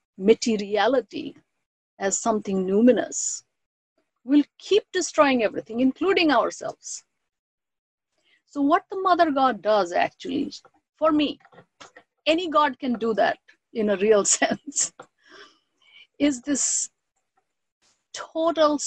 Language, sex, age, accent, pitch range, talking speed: English, female, 50-69, Indian, 220-300 Hz, 100 wpm